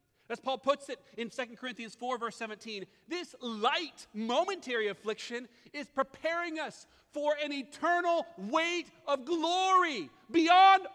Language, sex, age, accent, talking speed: English, male, 40-59, American, 130 wpm